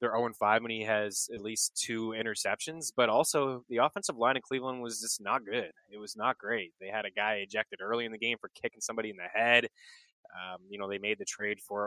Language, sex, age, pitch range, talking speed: English, male, 20-39, 115-160 Hz, 235 wpm